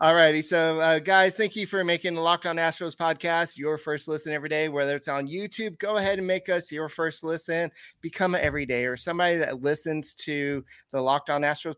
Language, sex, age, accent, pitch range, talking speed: English, male, 30-49, American, 135-165 Hz, 220 wpm